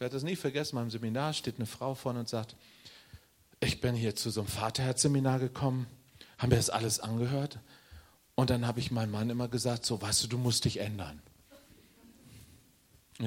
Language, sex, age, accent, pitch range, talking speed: German, male, 40-59, German, 110-165 Hz, 195 wpm